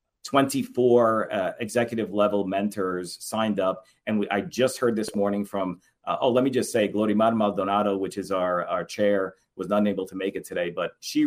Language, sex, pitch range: English, male, 95-115 Hz